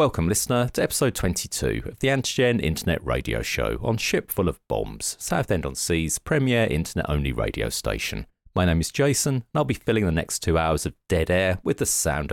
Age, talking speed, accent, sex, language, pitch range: 40-59, 205 wpm, British, male, English, 80-110 Hz